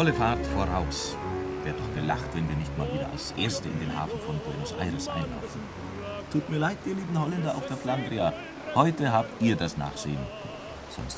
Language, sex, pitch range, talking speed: German, male, 80-130 Hz, 190 wpm